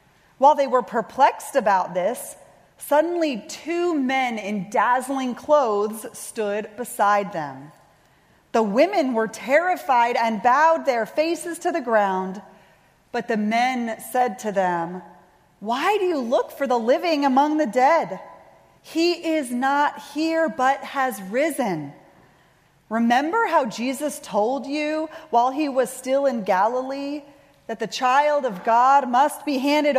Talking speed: 135 wpm